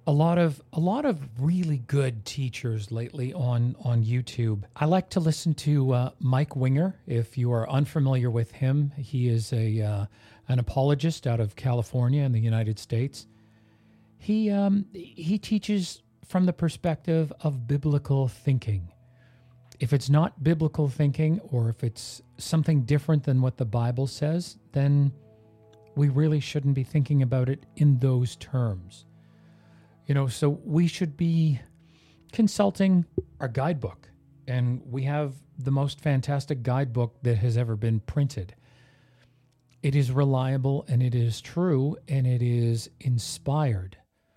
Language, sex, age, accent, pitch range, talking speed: English, male, 40-59, American, 120-150 Hz, 145 wpm